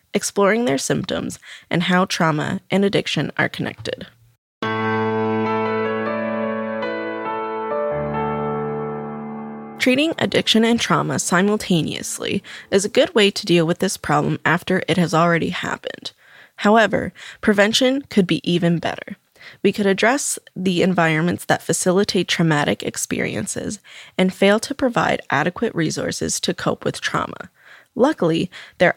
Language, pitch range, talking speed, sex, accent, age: English, 155-200 Hz, 115 wpm, female, American, 20-39